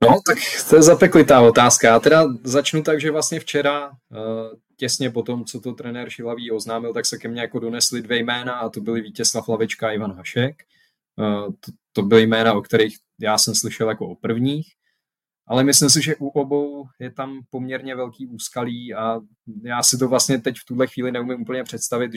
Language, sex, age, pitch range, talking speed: Czech, male, 20-39, 110-125 Hz, 190 wpm